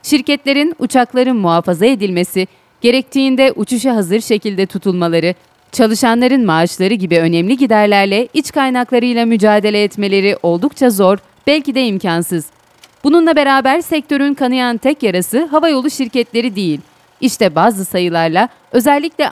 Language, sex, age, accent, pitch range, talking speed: Turkish, female, 40-59, native, 190-260 Hz, 110 wpm